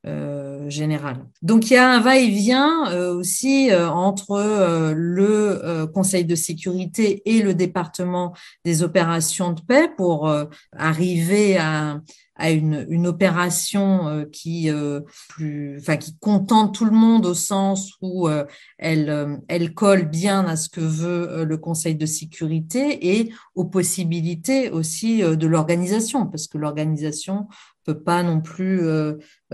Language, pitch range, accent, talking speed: French, 160-210 Hz, French, 150 wpm